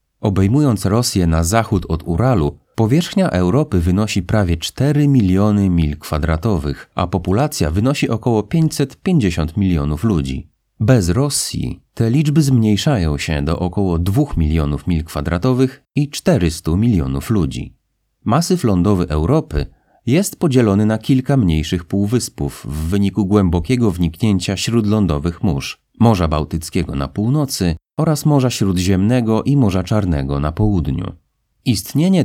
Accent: native